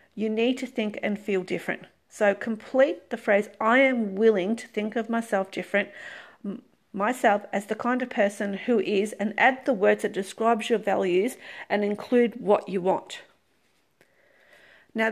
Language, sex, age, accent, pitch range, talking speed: English, female, 40-59, Australian, 205-245 Hz, 165 wpm